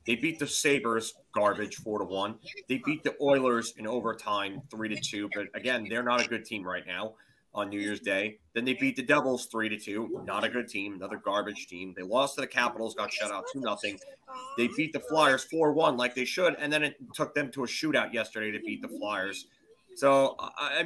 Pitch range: 120-155 Hz